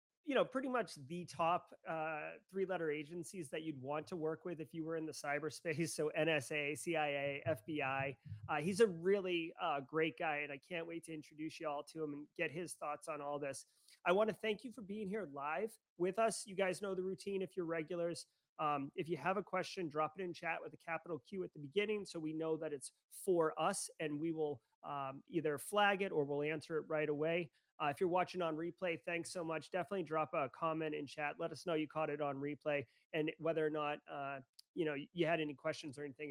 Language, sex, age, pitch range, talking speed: English, male, 30-49, 145-180 Hz, 235 wpm